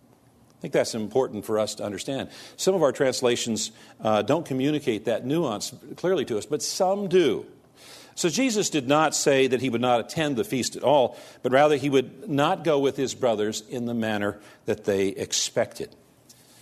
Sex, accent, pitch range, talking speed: male, American, 115-155 Hz, 190 wpm